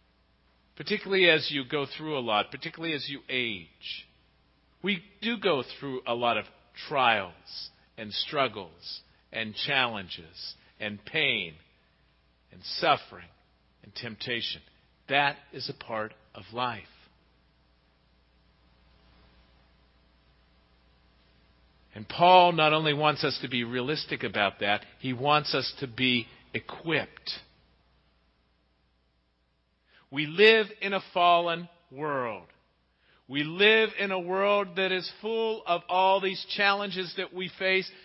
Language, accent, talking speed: English, American, 115 wpm